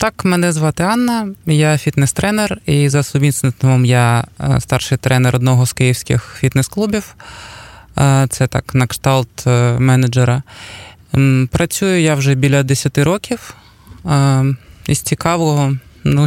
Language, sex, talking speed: Ukrainian, male, 110 wpm